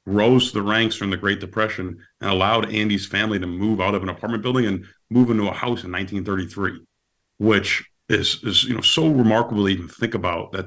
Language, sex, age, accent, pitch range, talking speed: English, male, 40-59, American, 90-110 Hz, 215 wpm